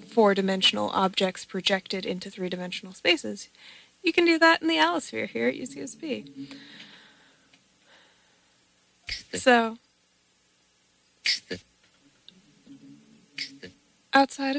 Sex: female